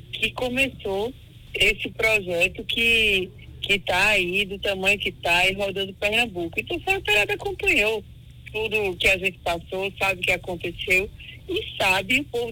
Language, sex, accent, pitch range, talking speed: Portuguese, female, Brazilian, 180-235 Hz, 160 wpm